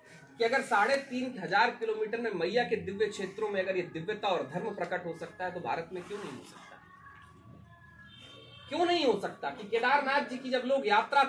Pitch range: 215-275 Hz